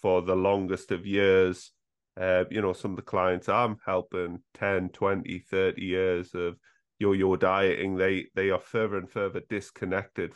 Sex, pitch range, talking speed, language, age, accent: male, 90-105 Hz, 160 wpm, English, 30-49, British